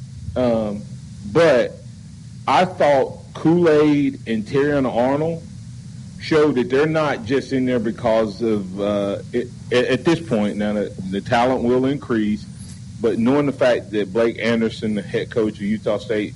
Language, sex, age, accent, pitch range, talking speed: English, male, 40-59, American, 105-125 Hz, 145 wpm